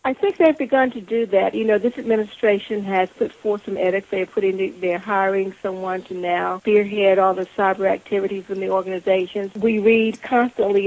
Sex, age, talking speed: female, 60-79, 190 wpm